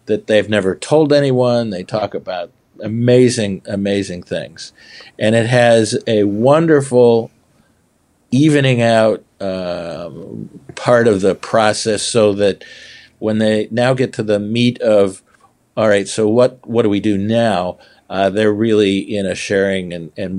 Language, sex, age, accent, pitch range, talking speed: English, male, 50-69, American, 100-125 Hz, 145 wpm